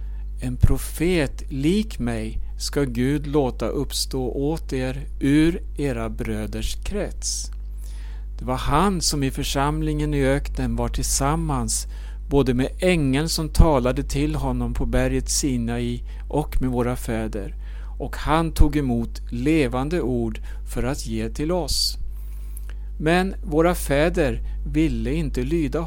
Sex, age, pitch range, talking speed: male, 60-79, 110-150 Hz, 130 wpm